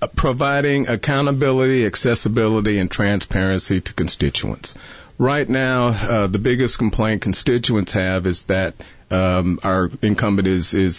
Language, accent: English, American